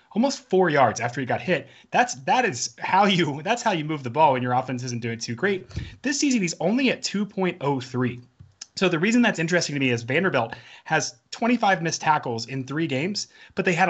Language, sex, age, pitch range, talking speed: English, male, 30-49, 125-175 Hz, 215 wpm